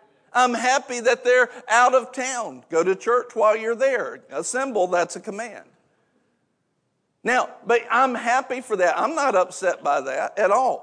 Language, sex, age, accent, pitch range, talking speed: English, male, 50-69, American, 160-230 Hz, 165 wpm